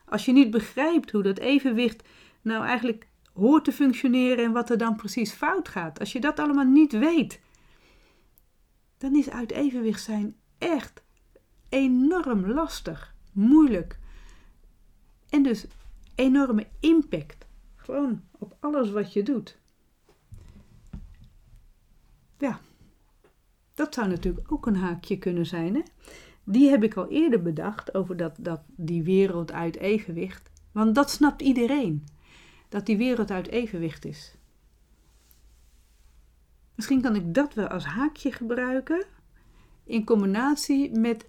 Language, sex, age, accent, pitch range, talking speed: Dutch, female, 40-59, Dutch, 185-260 Hz, 125 wpm